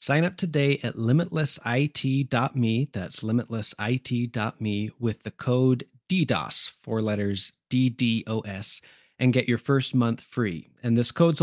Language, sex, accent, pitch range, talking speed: English, male, American, 110-130 Hz, 120 wpm